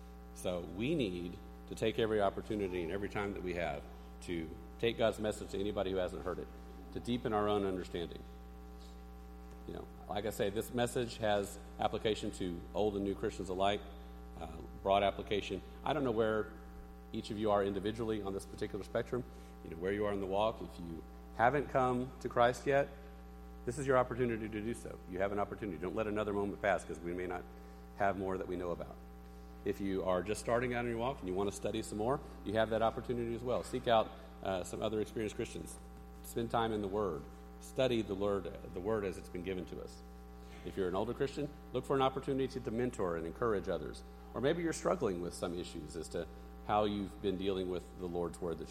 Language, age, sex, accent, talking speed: English, 50-69, male, American, 220 wpm